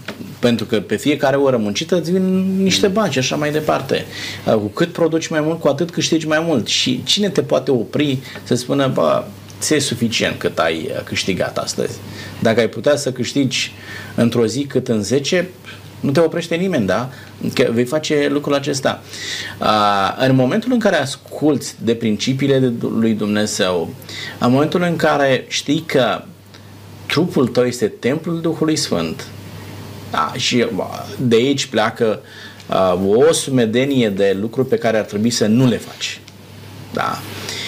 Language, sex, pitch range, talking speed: Romanian, male, 105-150 Hz, 155 wpm